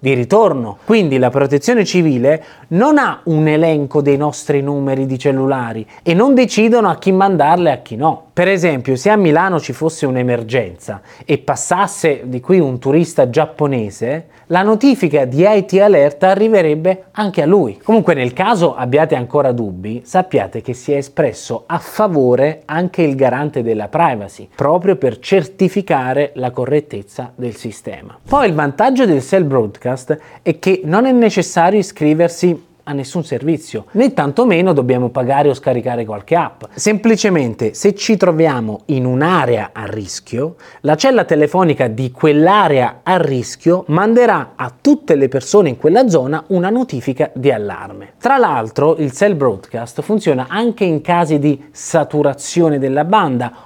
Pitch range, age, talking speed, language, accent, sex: 130-185 Hz, 30-49, 155 wpm, Italian, native, male